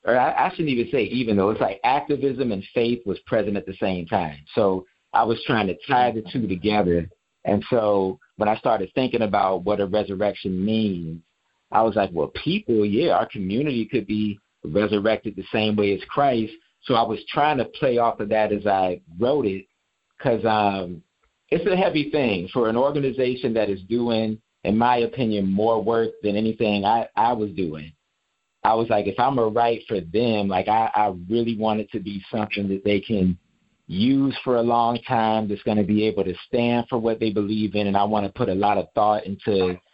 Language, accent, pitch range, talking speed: English, American, 100-120 Hz, 205 wpm